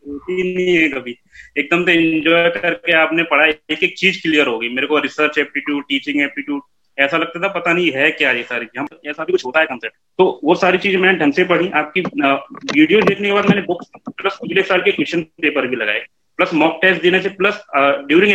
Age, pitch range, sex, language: 30-49, 145-185 Hz, male, Hindi